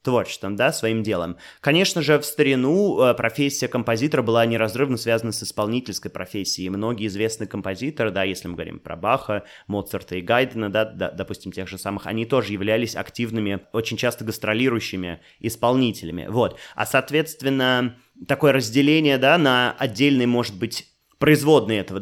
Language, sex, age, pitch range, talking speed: Russian, male, 20-39, 110-140 Hz, 145 wpm